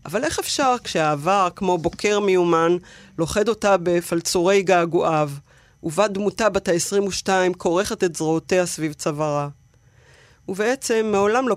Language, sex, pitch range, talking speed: Hebrew, female, 165-195 Hz, 120 wpm